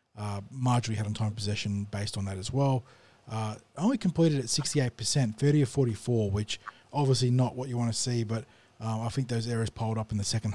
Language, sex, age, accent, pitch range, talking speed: English, male, 20-39, Australian, 105-125 Hz, 230 wpm